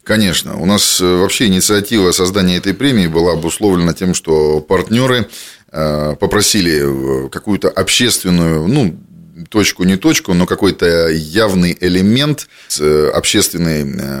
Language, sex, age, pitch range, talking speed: Russian, male, 30-49, 80-100 Hz, 100 wpm